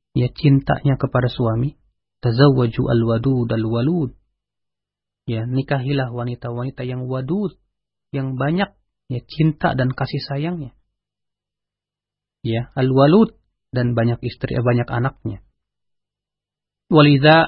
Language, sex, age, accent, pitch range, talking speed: Indonesian, male, 40-59, native, 125-175 Hz, 95 wpm